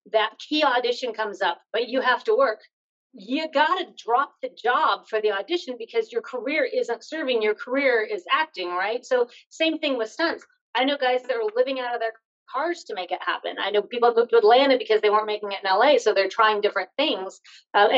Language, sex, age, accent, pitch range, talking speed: English, female, 40-59, American, 205-270 Hz, 220 wpm